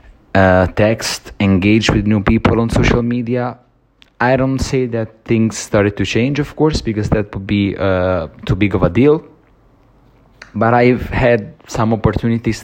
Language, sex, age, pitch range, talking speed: English, male, 30-49, 95-115 Hz, 160 wpm